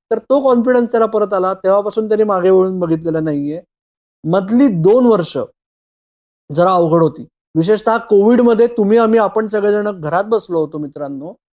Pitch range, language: 170-220 Hz, Marathi